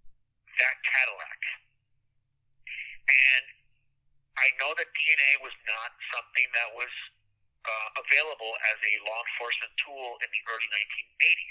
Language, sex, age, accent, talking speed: English, male, 50-69, American, 115 wpm